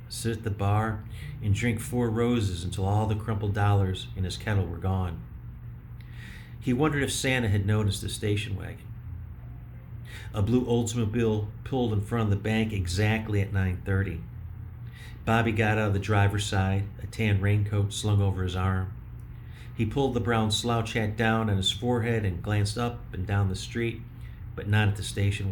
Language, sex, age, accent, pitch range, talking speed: English, male, 40-59, American, 100-120 Hz, 175 wpm